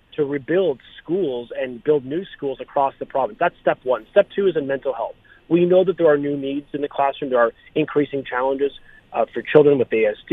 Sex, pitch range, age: male, 125-170 Hz, 30-49